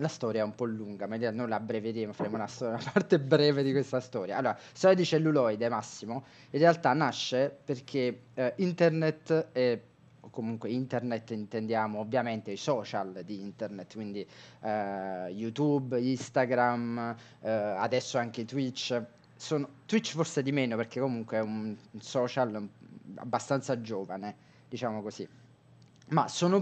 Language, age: Italian, 20-39